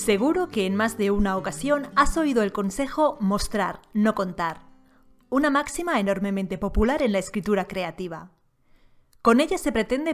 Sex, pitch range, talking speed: female, 185-260 Hz, 155 wpm